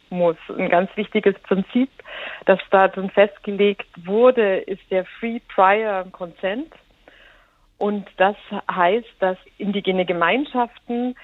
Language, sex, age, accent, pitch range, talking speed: German, female, 50-69, German, 185-230 Hz, 105 wpm